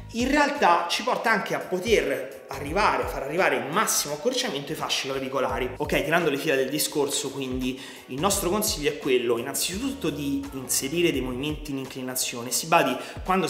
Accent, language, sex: native, Italian, male